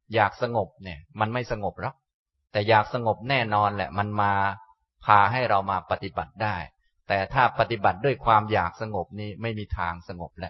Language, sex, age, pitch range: Thai, male, 20-39, 95-125 Hz